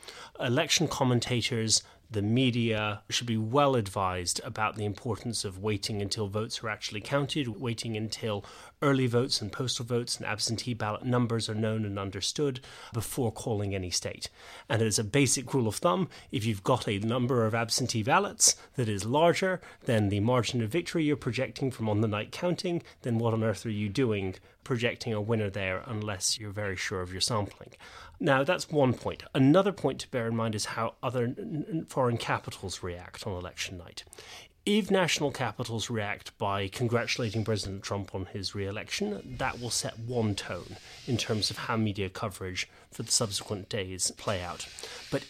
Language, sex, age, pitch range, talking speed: English, male, 30-49, 105-130 Hz, 175 wpm